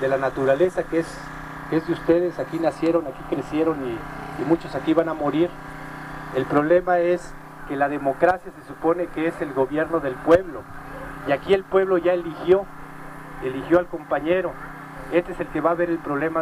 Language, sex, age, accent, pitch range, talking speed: Spanish, male, 40-59, Mexican, 140-170 Hz, 185 wpm